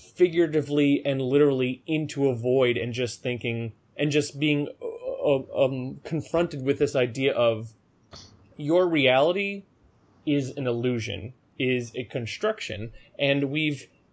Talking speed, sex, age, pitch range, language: 125 wpm, male, 20-39, 120-145 Hz, English